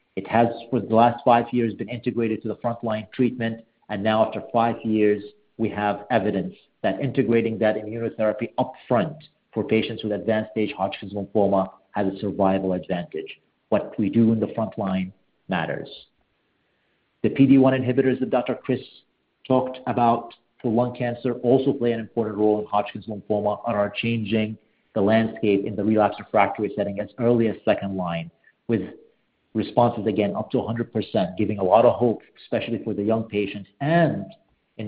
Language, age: English, 50-69